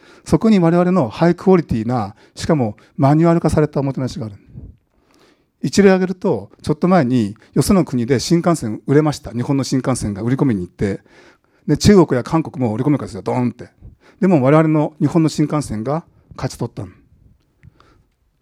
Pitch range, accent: 120-170 Hz, native